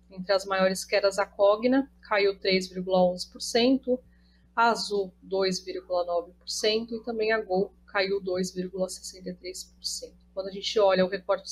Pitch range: 185-220 Hz